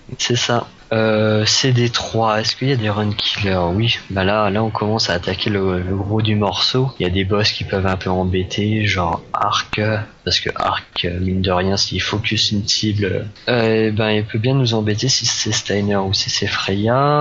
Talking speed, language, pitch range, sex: 210 wpm, French, 100-120 Hz, male